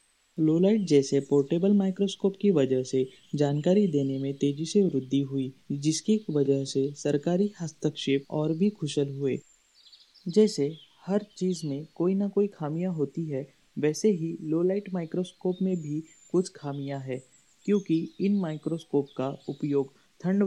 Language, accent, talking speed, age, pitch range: Hindi, native, 140 wpm, 30-49, 140-185 Hz